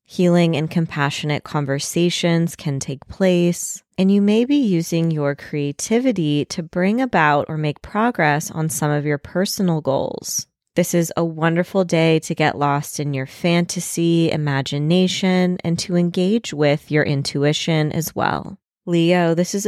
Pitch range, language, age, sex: 150-185 Hz, English, 20-39, female